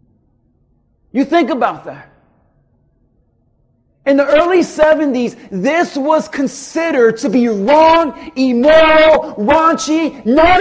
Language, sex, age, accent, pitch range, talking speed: English, male, 40-59, American, 255-315 Hz, 95 wpm